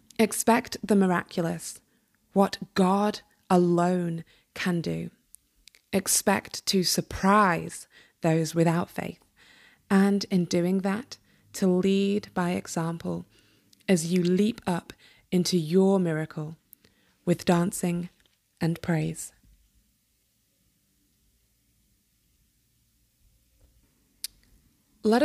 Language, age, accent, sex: English, 20-39, British, female